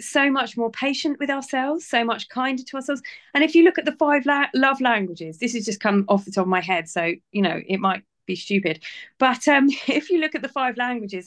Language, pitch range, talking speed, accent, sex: English, 210-275 Hz, 250 wpm, British, female